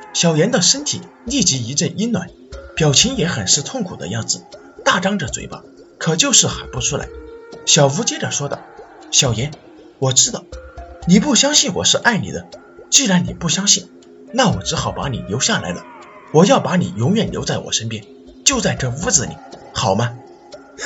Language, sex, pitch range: Chinese, male, 140-230 Hz